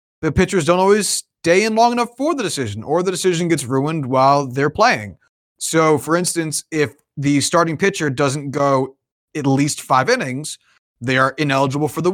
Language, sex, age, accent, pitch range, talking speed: English, male, 30-49, American, 140-200 Hz, 185 wpm